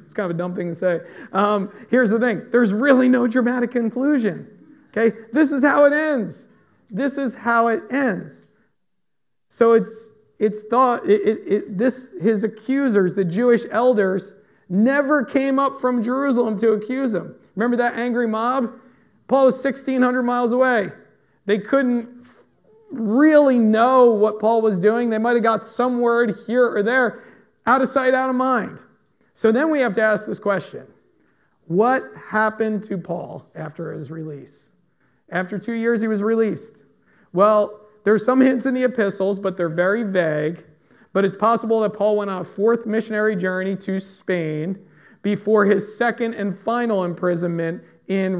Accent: American